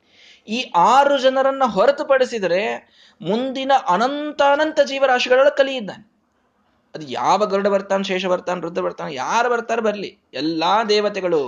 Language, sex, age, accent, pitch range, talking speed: Kannada, male, 20-39, native, 140-225 Hz, 110 wpm